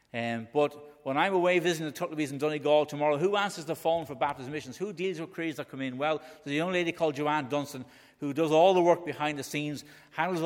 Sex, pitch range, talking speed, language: male, 130-170 Hz, 240 wpm, English